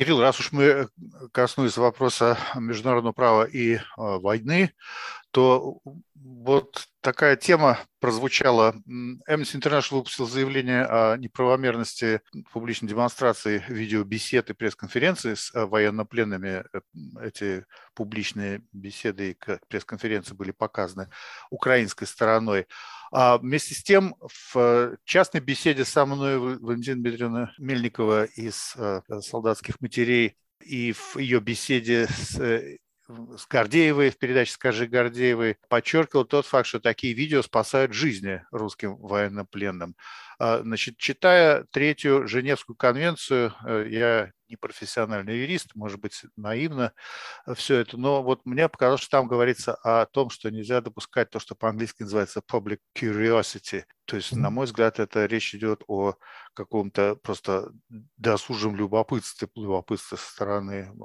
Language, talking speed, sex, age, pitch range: Russian, 120 wpm, male, 50-69, 105-130 Hz